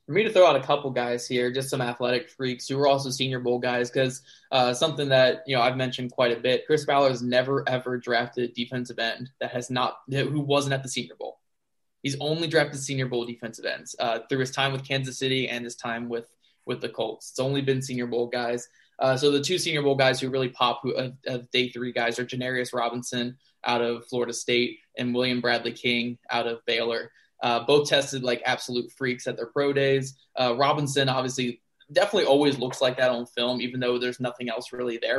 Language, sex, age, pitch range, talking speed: English, male, 20-39, 120-135 Hz, 225 wpm